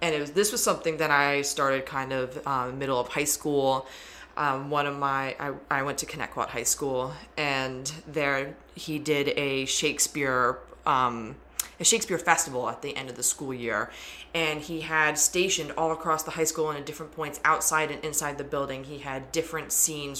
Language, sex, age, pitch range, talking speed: English, female, 20-39, 135-160 Hz, 195 wpm